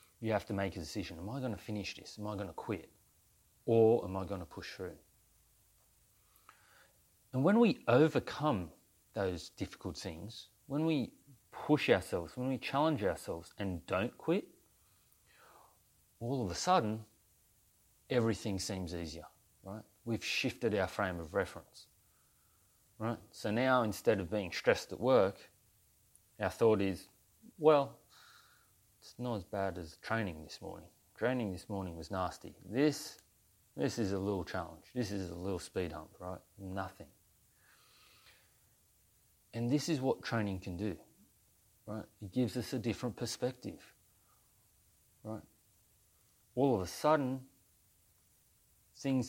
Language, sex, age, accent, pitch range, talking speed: English, male, 30-49, Australian, 95-120 Hz, 140 wpm